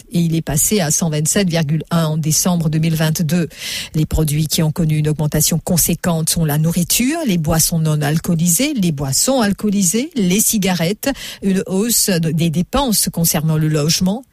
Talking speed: 150 wpm